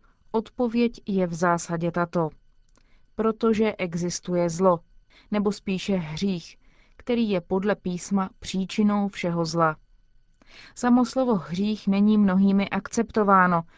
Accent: native